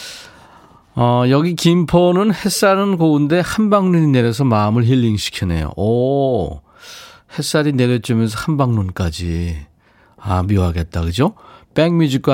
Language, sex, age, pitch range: Korean, male, 40-59, 100-155 Hz